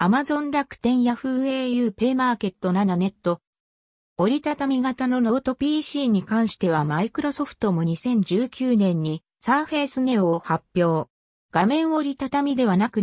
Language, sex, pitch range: Japanese, female, 185-255 Hz